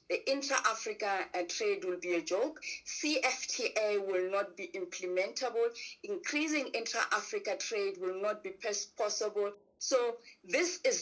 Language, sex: English, female